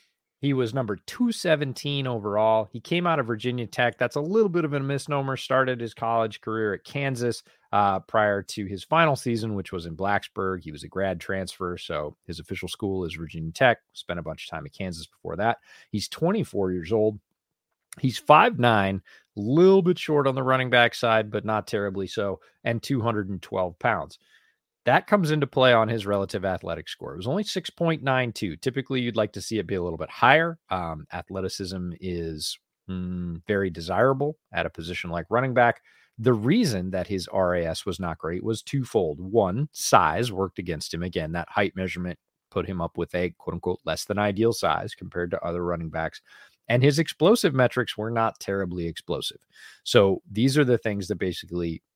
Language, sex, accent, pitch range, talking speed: English, male, American, 90-130 Hz, 185 wpm